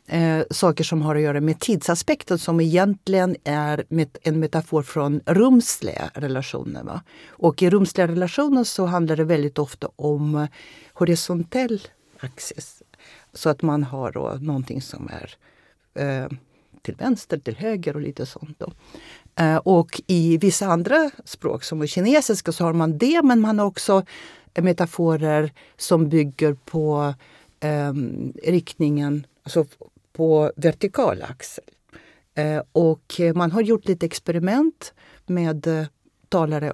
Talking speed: 140 wpm